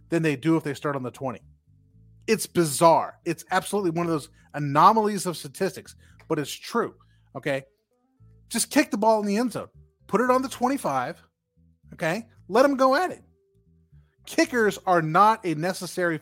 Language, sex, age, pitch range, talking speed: English, male, 30-49, 120-195 Hz, 175 wpm